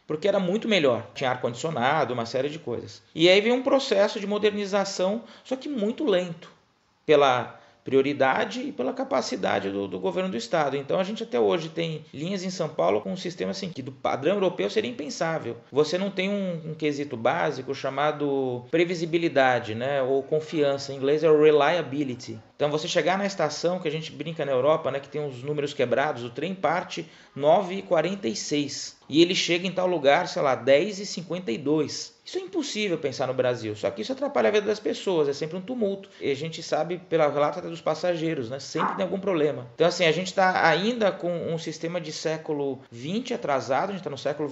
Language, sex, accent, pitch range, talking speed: Portuguese, male, Brazilian, 145-195 Hz, 195 wpm